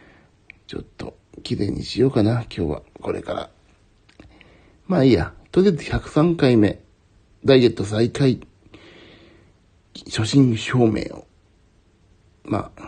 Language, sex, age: Japanese, male, 60-79